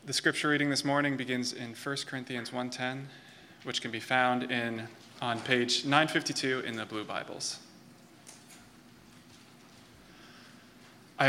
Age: 20-39